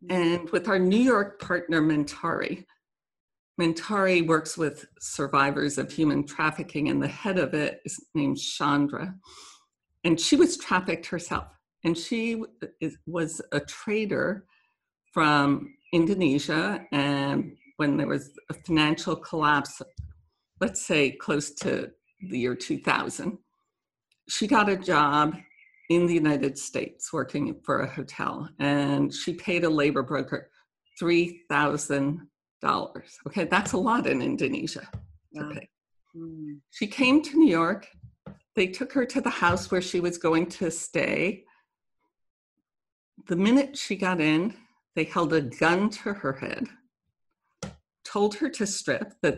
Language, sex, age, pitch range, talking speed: English, female, 50-69, 150-205 Hz, 130 wpm